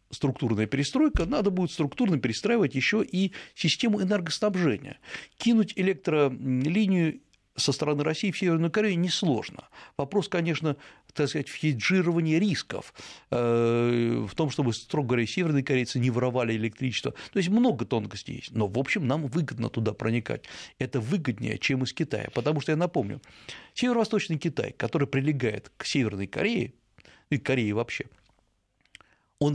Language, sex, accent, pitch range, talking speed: Russian, male, native, 120-165 Hz, 135 wpm